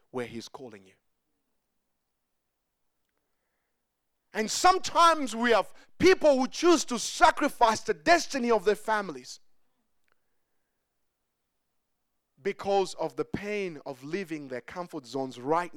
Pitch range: 145-220 Hz